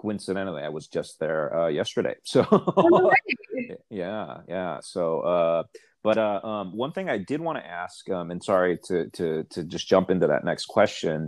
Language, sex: English, male